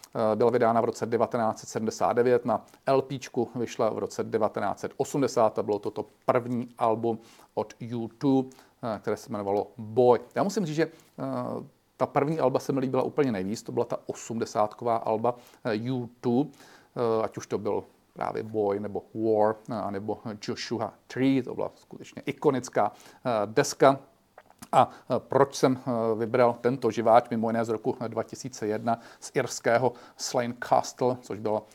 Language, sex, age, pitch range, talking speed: Czech, male, 40-59, 110-130 Hz, 140 wpm